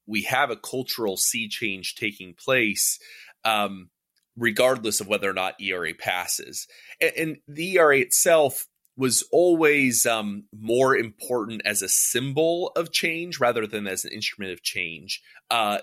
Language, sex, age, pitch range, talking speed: English, male, 30-49, 95-130 Hz, 150 wpm